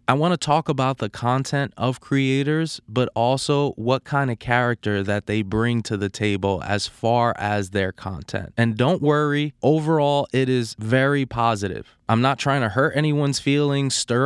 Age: 20-39